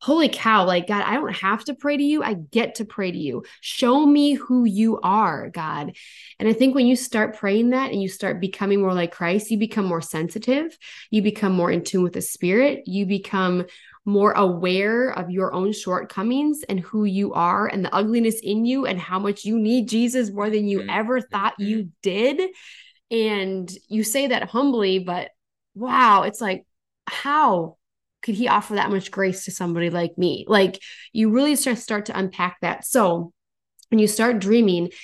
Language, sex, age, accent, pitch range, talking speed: English, female, 20-39, American, 180-225 Hz, 195 wpm